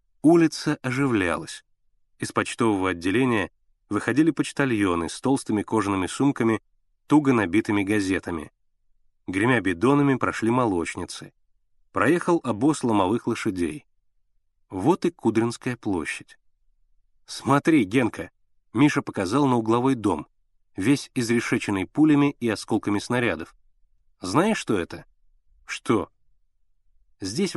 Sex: male